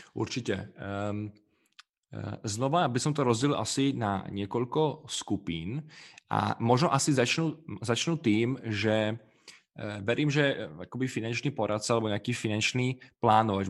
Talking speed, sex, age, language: 115 wpm, male, 20-39, Czech